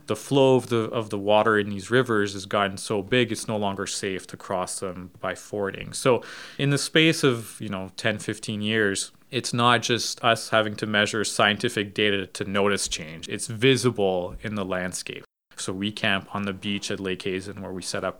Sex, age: male, 20-39